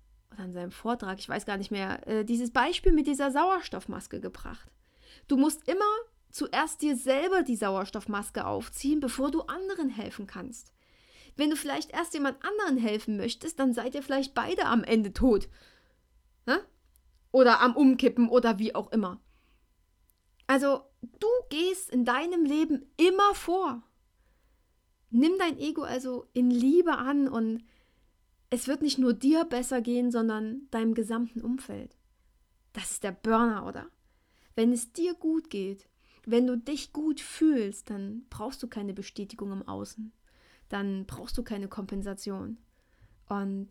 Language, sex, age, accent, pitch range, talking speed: German, female, 30-49, German, 200-275 Hz, 145 wpm